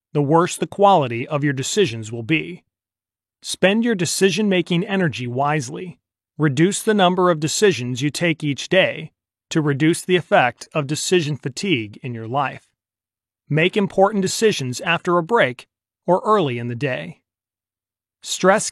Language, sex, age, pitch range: Thai, male, 30-49, 125-175 Hz